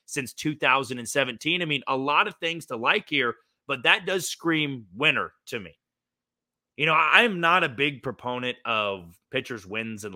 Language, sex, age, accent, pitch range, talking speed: English, male, 30-49, American, 125-170 Hz, 170 wpm